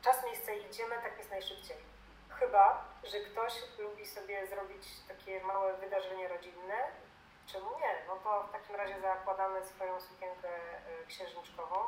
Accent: native